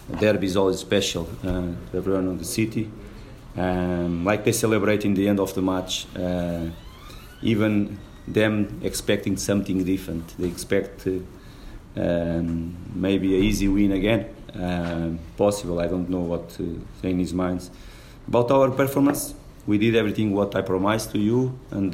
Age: 30-49